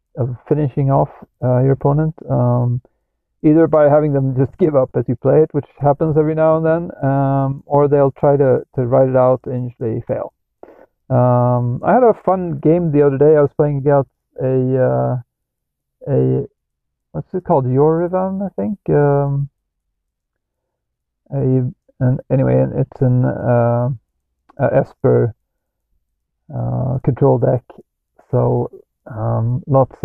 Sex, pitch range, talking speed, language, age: male, 120-150 Hz, 145 wpm, English, 40-59